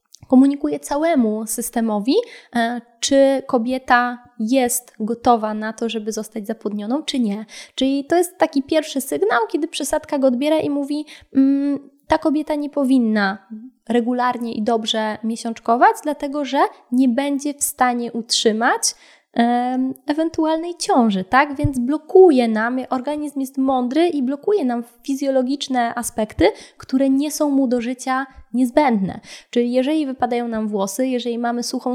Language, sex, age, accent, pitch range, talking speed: Polish, female, 20-39, native, 225-275 Hz, 130 wpm